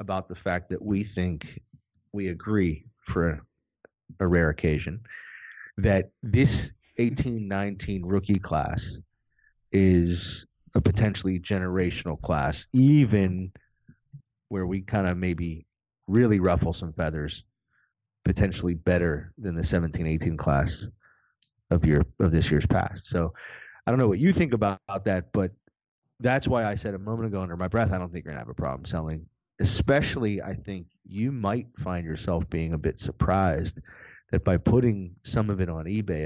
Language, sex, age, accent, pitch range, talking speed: English, male, 30-49, American, 85-105 Hz, 155 wpm